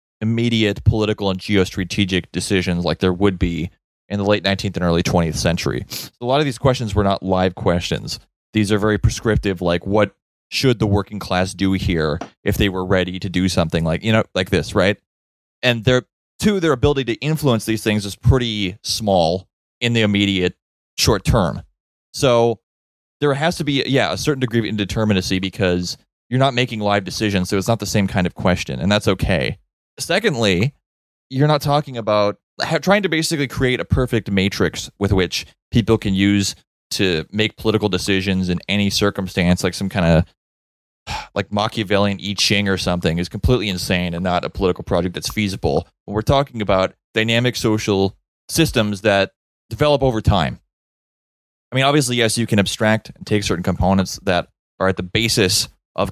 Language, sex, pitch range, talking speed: English, male, 90-115 Hz, 180 wpm